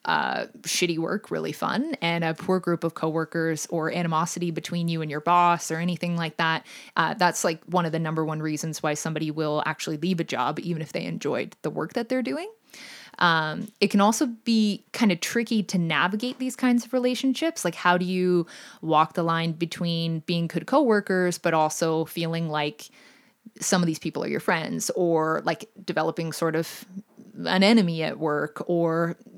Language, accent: English, American